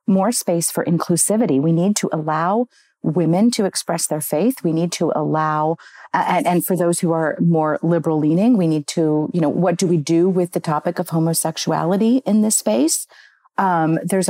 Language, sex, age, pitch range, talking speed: English, female, 40-59, 160-195 Hz, 195 wpm